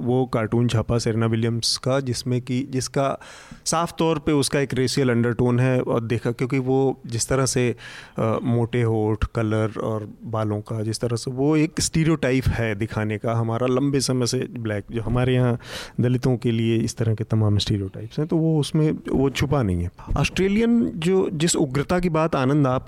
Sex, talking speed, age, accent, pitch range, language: male, 190 wpm, 30-49, native, 115-145 Hz, Hindi